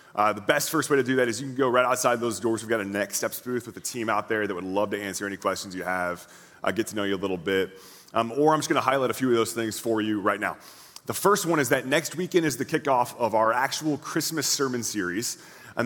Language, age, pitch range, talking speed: English, 30-49, 110-145 Hz, 290 wpm